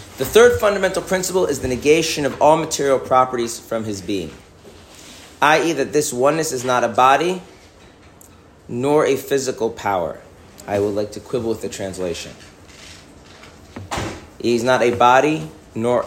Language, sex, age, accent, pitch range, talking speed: English, male, 30-49, American, 95-120 Hz, 145 wpm